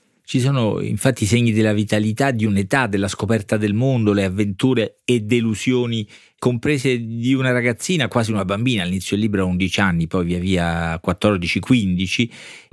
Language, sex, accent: Italian, male, native